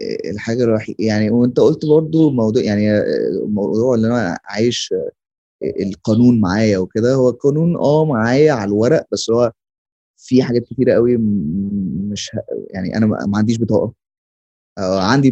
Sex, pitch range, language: male, 105-125 Hz, Arabic